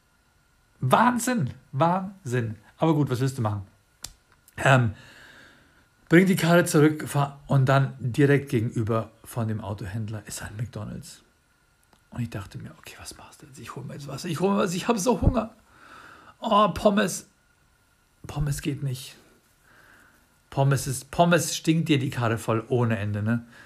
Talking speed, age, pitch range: 160 wpm, 50-69, 115-145 Hz